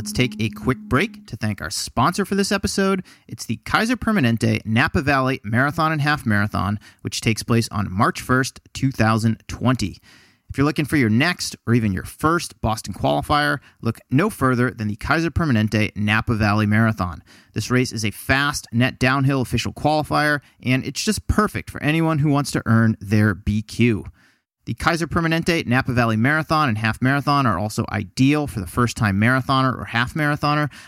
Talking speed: 175 wpm